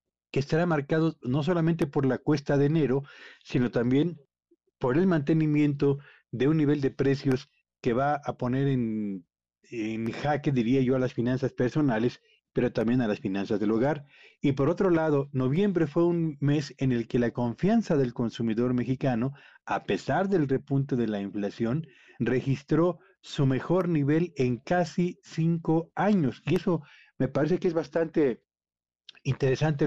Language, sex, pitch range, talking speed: Spanish, male, 125-160 Hz, 160 wpm